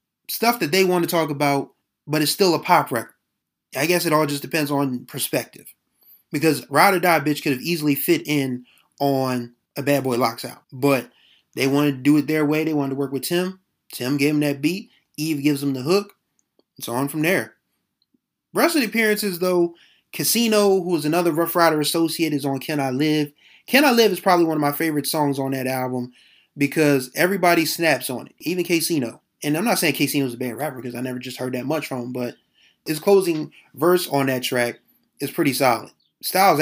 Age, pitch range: 20-39, 135-170 Hz